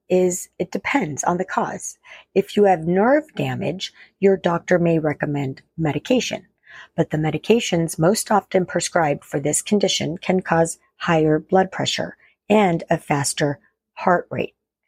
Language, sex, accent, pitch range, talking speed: English, female, American, 160-200 Hz, 140 wpm